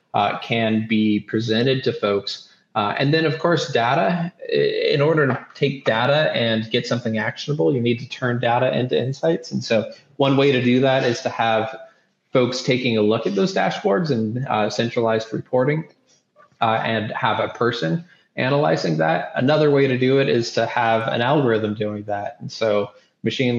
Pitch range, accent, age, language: 110-130 Hz, American, 20-39, English